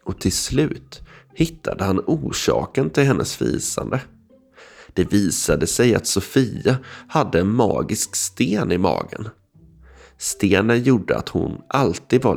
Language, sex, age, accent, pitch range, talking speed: Swedish, male, 30-49, native, 90-120 Hz, 125 wpm